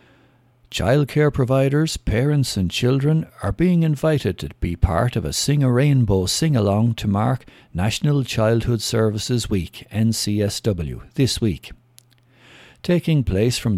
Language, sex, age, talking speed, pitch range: English, male, 60-79, 125 wpm, 105-130 Hz